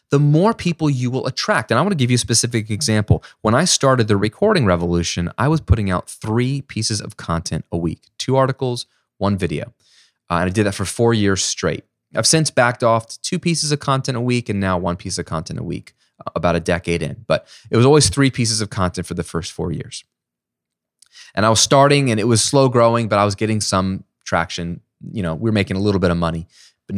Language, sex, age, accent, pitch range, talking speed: English, male, 20-39, American, 95-120 Hz, 235 wpm